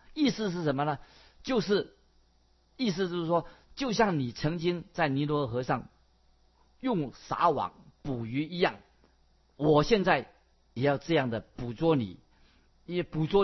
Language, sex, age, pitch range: Chinese, male, 50-69, 120-170 Hz